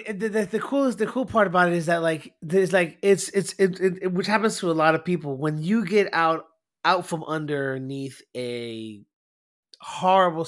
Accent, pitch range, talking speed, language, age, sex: American, 145-195 Hz, 200 wpm, English, 30-49, male